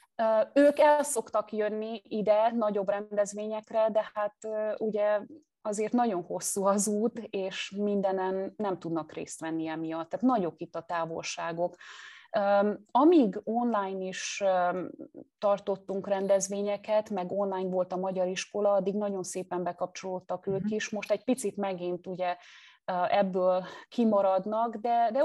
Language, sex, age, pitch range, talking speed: Hungarian, female, 30-49, 175-210 Hz, 125 wpm